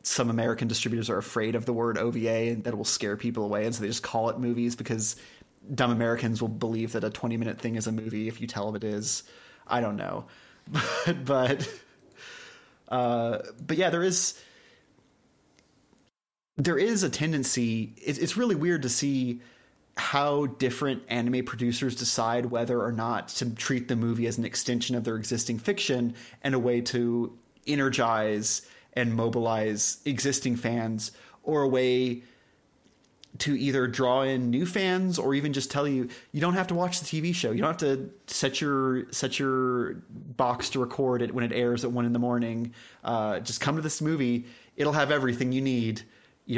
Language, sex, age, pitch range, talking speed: English, male, 30-49, 115-135 Hz, 185 wpm